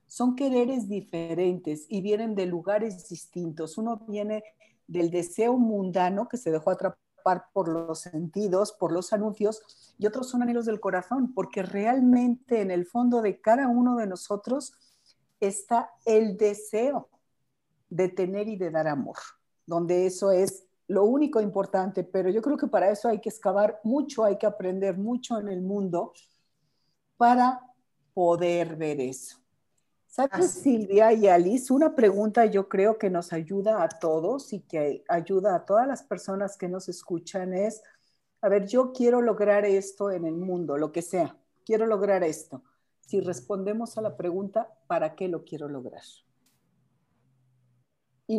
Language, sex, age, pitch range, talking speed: Spanish, female, 50-69, 175-225 Hz, 155 wpm